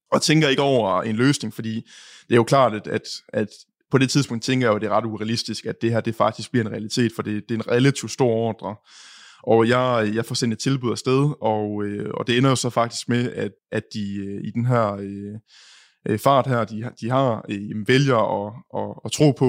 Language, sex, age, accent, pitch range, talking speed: English, male, 20-39, Danish, 110-140 Hz, 220 wpm